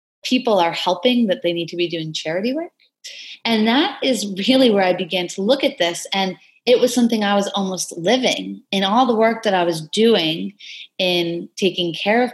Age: 30-49